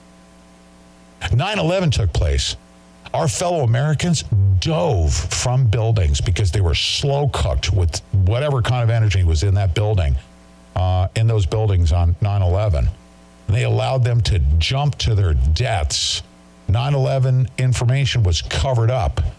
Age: 50-69